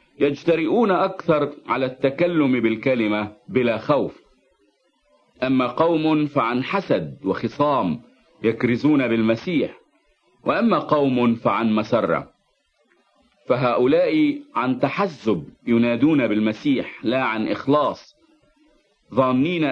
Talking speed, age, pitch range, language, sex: 80 wpm, 50-69, 120-175 Hz, English, male